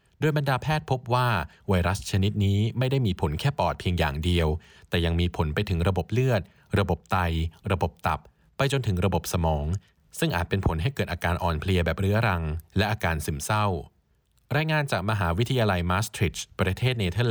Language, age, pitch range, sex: Thai, 20-39, 85-115 Hz, male